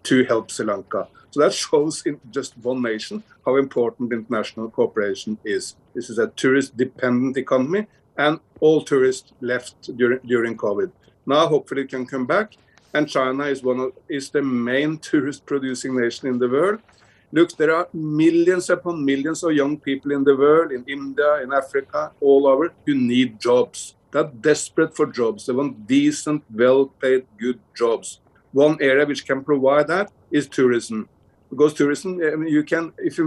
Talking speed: 175 wpm